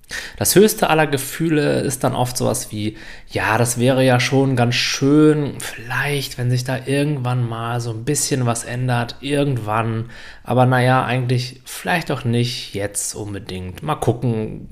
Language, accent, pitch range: German, German, 100-135 Hz